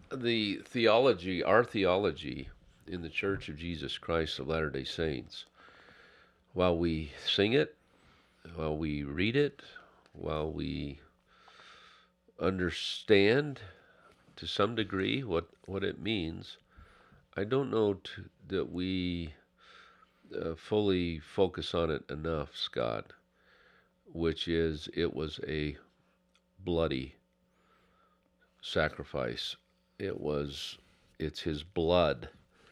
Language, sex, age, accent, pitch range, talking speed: English, male, 50-69, American, 70-85 Hz, 105 wpm